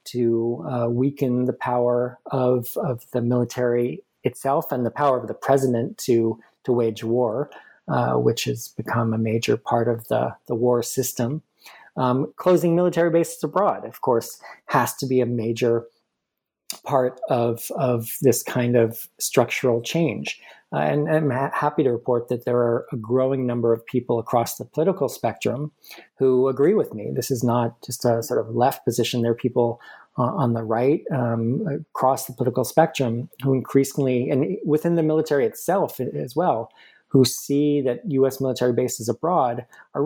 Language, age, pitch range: English, 40-59, 120-135 Hz